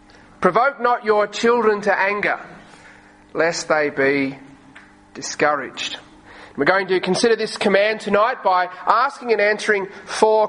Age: 30-49